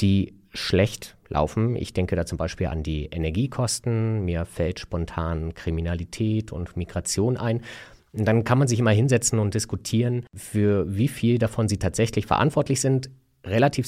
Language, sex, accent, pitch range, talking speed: German, male, German, 95-125 Hz, 150 wpm